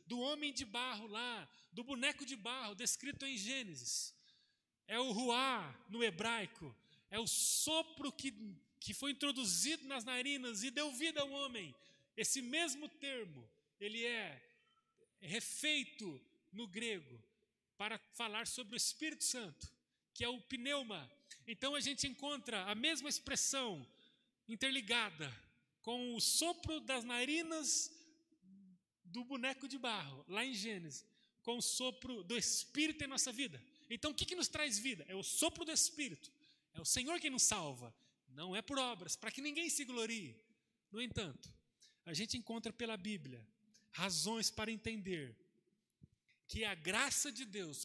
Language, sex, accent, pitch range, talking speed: Portuguese, male, Brazilian, 200-275 Hz, 150 wpm